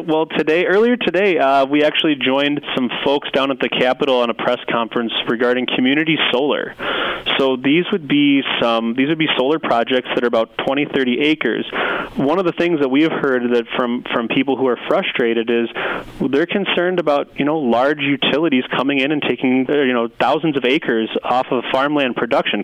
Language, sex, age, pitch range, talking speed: English, male, 30-49, 125-160 Hz, 195 wpm